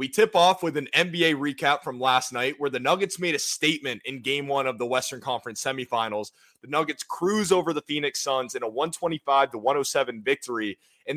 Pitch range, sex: 130-165 Hz, male